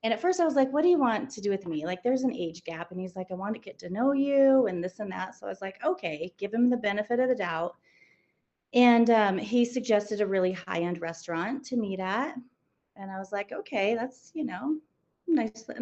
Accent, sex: American, female